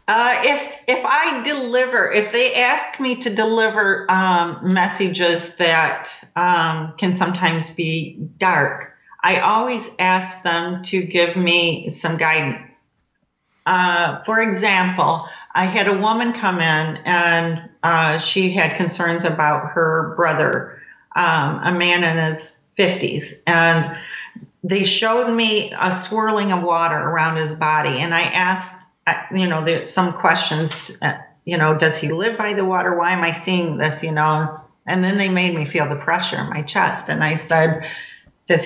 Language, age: English, 40-59